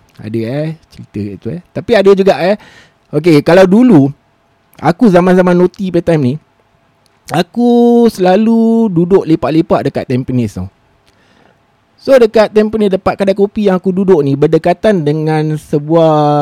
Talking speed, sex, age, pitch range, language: 140 wpm, male, 20-39, 140-230 Hz, Malay